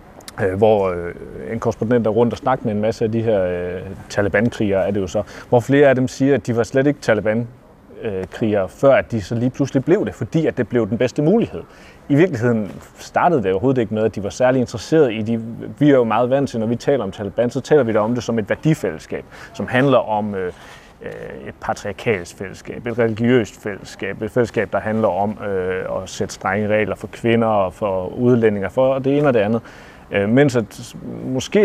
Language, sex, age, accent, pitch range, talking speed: Danish, male, 30-49, native, 105-135 Hz, 215 wpm